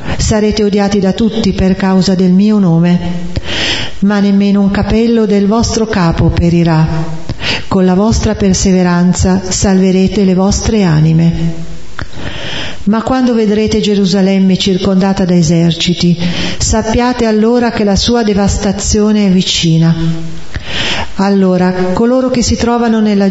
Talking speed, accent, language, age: 120 wpm, native, Italian, 40-59